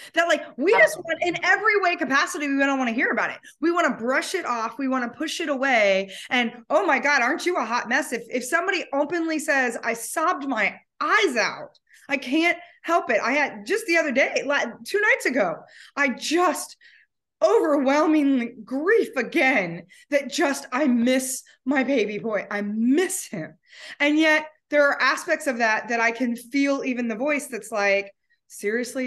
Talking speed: 190 wpm